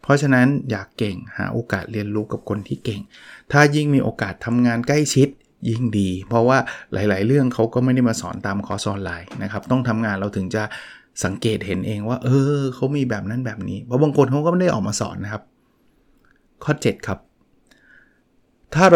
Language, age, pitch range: Thai, 20-39, 105-135 Hz